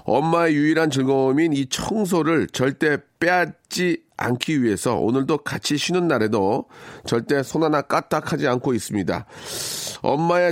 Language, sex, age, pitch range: Korean, male, 40-59, 115-155 Hz